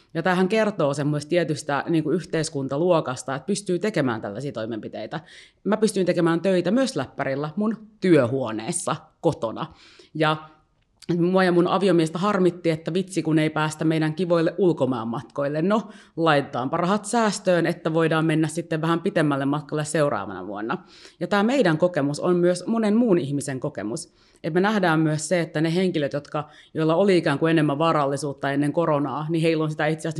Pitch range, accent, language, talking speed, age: 145-180 Hz, native, Finnish, 160 wpm, 30-49